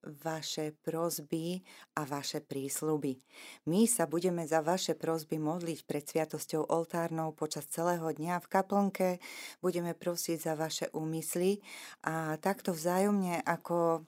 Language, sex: Slovak, female